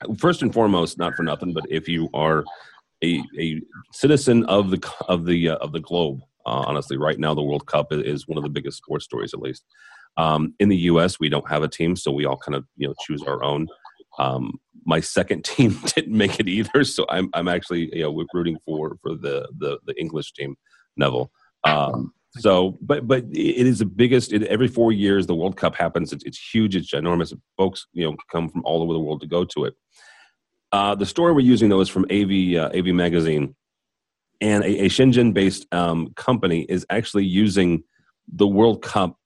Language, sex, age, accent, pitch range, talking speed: English, male, 40-59, American, 80-105 Hz, 210 wpm